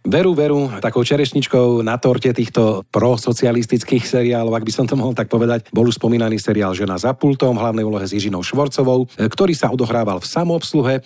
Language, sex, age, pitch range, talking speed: Slovak, male, 40-59, 105-130 Hz, 175 wpm